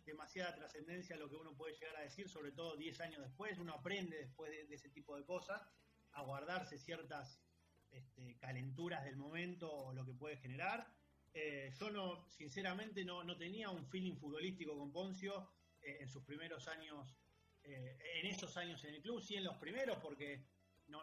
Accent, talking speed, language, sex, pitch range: Argentinian, 185 wpm, Spanish, male, 145-175 Hz